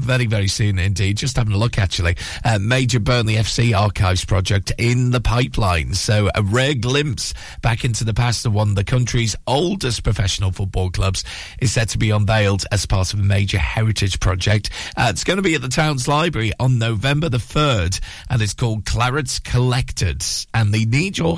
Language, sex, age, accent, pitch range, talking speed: English, male, 40-59, British, 100-120 Hz, 195 wpm